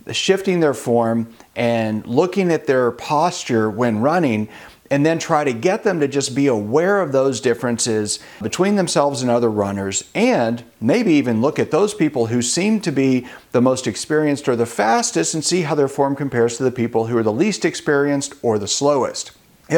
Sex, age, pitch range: male, 40-59, 120-165 Hz